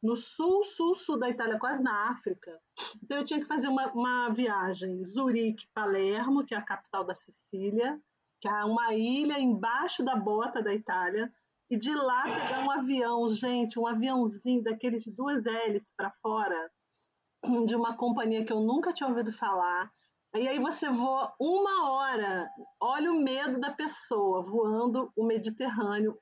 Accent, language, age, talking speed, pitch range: Brazilian, Portuguese, 40-59, 160 wpm, 220-260 Hz